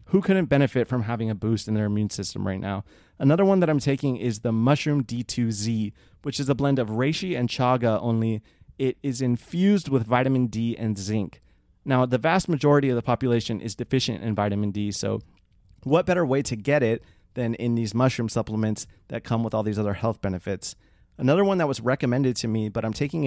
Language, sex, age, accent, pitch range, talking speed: English, male, 30-49, American, 110-130 Hz, 210 wpm